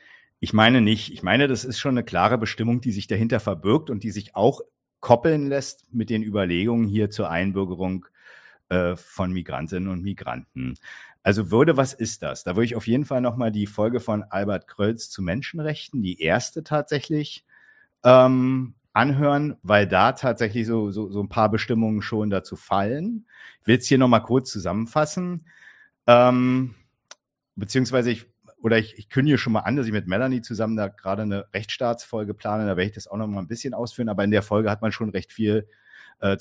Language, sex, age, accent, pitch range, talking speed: German, male, 50-69, German, 105-130 Hz, 190 wpm